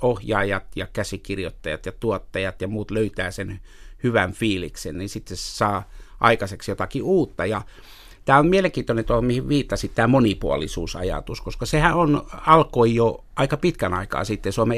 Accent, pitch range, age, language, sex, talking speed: native, 100-135 Hz, 60-79, Finnish, male, 150 wpm